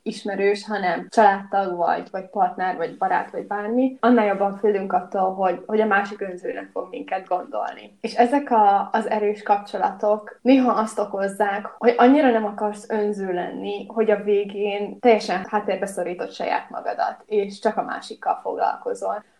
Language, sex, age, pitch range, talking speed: Hungarian, female, 20-39, 190-220 Hz, 150 wpm